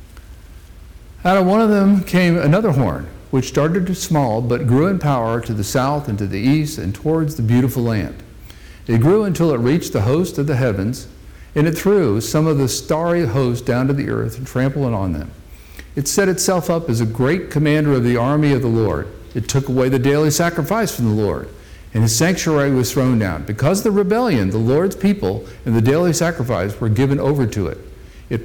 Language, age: English, 50-69